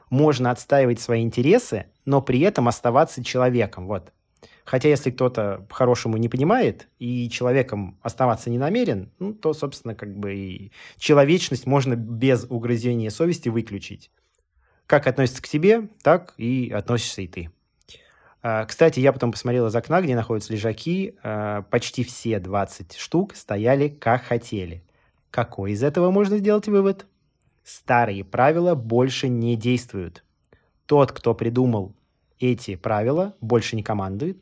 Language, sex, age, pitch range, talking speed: Russian, male, 20-39, 105-135 Hz, 135 wpm